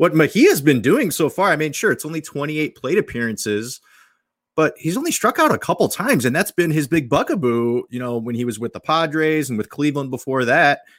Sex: male